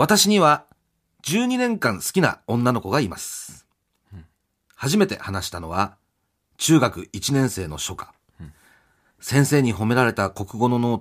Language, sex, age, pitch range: Japanese, male, 40-59, 95-140 Hz